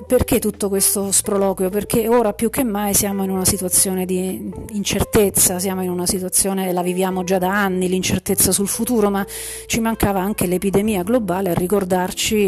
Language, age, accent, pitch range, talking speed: Italian, 40-59, native, 185-220 Hz, 170 wpm